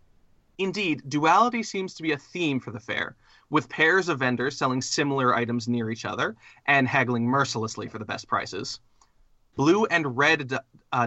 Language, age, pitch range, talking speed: English, 30-49, 120-155 Hz, 170 wpm